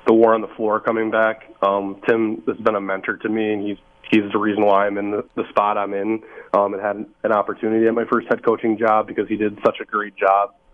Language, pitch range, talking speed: English, 100-110 Hz, 255 wpm